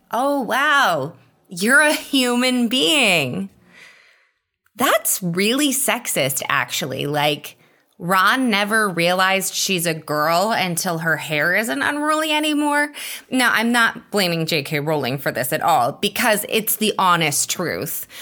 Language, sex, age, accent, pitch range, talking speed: English, female, 20-39, American, 170-240 Hz, 125 wpm